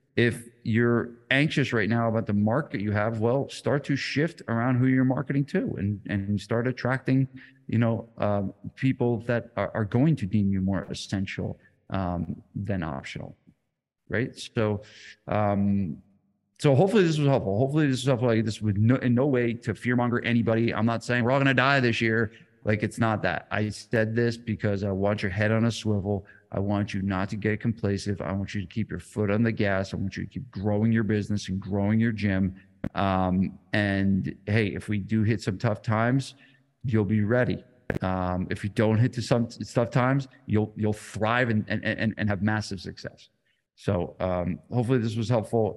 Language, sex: English, male